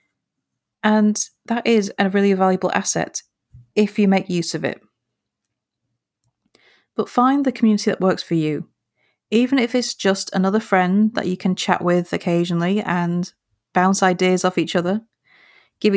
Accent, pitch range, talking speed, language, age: British, 175-215 Hz, 150 wpm, English, 30-49